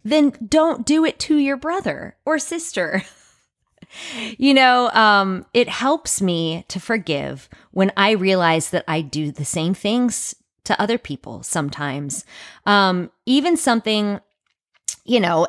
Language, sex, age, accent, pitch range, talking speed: English, female, 20-39, American, 170-250 Hz, 135 wpm